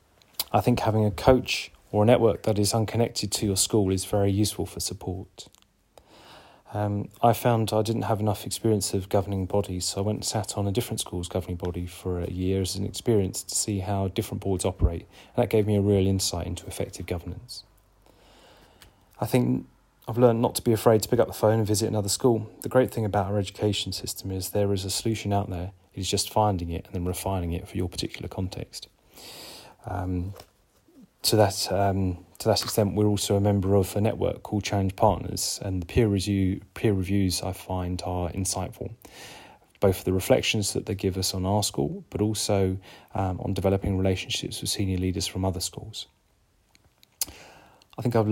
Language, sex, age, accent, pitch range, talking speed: English, male, 30-49, British, 95-110 Hz, 200 wpm